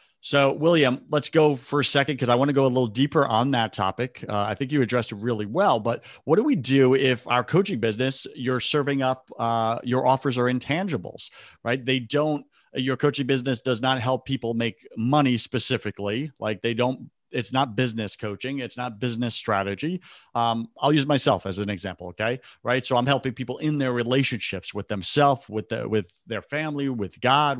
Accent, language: American, English